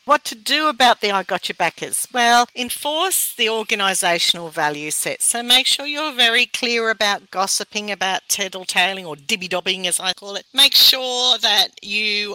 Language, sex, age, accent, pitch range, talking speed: English, female, 50-69, Australian, 170-220 Hz, 170 wpm